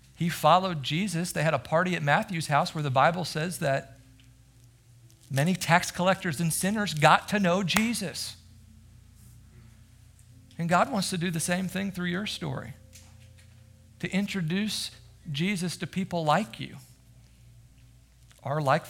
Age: 50-69